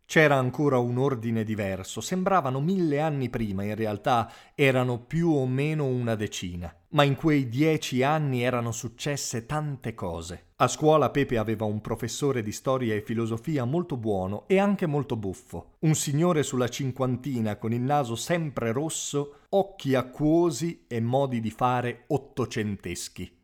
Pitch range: 110-140 Hz